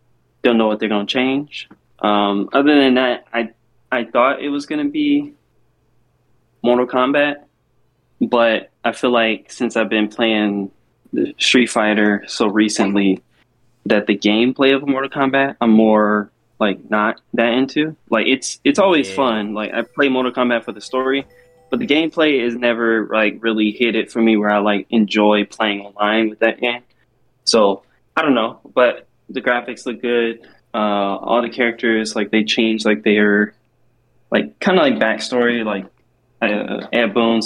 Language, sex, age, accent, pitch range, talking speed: English, male, 20-39, American, 105-125 Hz, 165 wpm